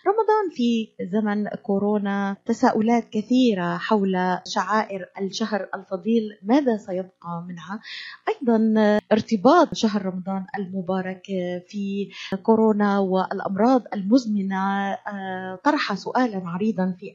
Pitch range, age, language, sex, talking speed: 185-225 Hz, 30-49, Arabic, female, 90 wpm